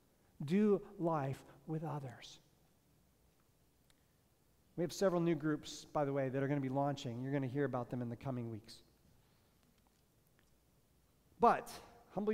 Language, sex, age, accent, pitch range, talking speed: English, male, 40-59, American, 145-190 Hz, 145 wpm